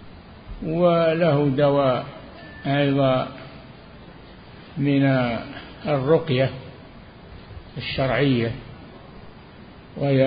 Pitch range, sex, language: 130-150 Hz, male, Arabic